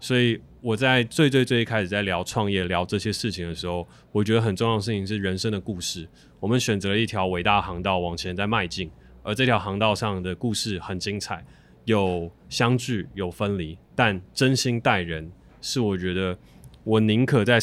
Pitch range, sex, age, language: 90-110 Hz, male, 20-39, Chinese